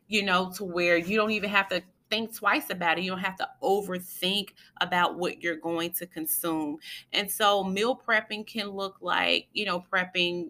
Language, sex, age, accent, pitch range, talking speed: English, female, 20-39, American, 155-200 Hz, 195 wpm